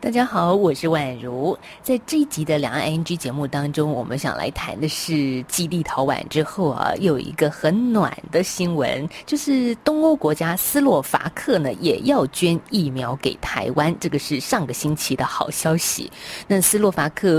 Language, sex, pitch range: Chinese, female, 150-205 Hz